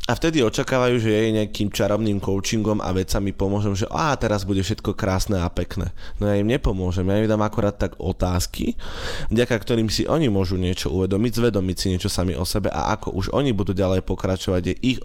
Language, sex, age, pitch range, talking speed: Slovak, male, 20-39, 95-110 Hz, 205 wpm